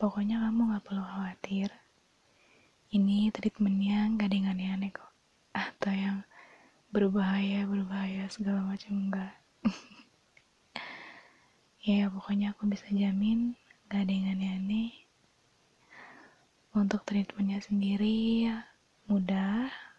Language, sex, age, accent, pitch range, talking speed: Indonesian, female, 20-39, native, 185-210 Hz, 100 wpm